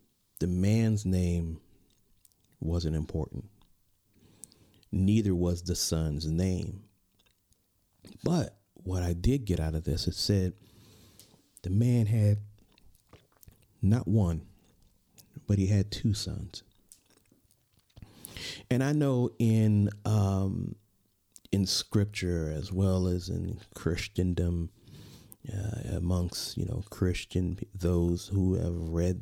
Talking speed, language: 105 wpm, English